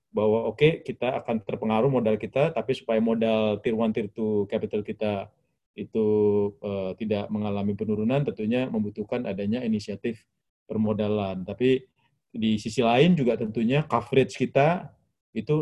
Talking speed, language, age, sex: 140 wpm, Indonesian, 20-39, male